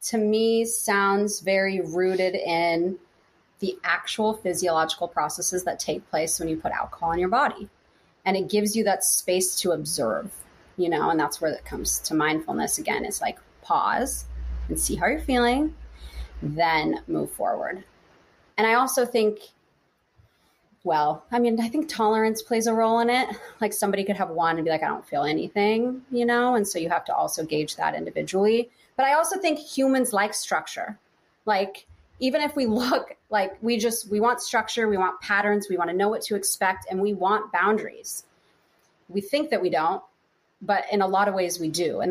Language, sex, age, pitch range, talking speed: English, female, 30-49, 170-225 Hz, 190 wpm